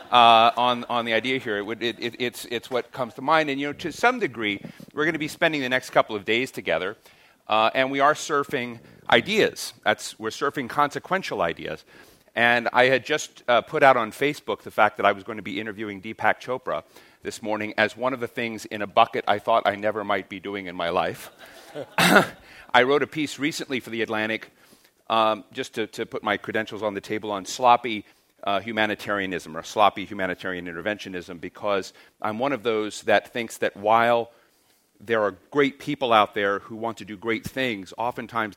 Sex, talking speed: male, 205 wpm